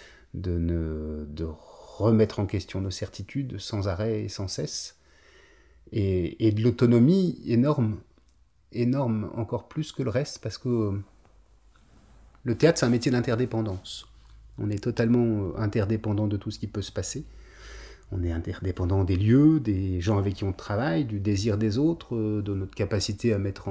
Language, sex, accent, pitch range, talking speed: French, male, French, 95-115 Hz, 160 wpm